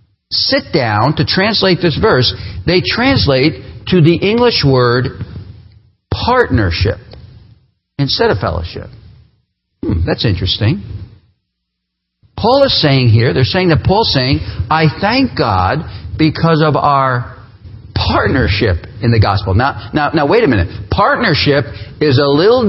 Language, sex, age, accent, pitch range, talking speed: English, male, 50-69, American, 105-160 Hz, 125 wpm